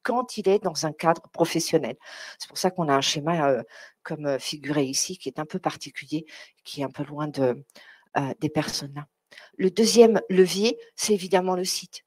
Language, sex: French, female